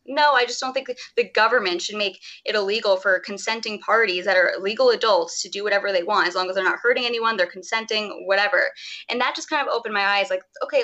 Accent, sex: American, female